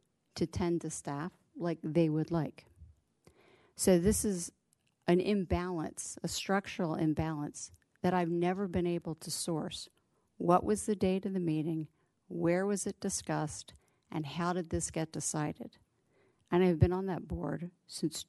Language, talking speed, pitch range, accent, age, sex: English, 155 wpm, 155-180 Hz, American, 50-69, female